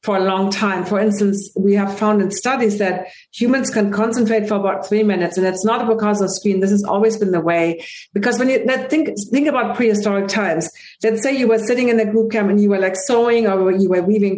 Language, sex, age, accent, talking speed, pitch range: English, female, 50-69, German, 240 wpm, 200-230 Hz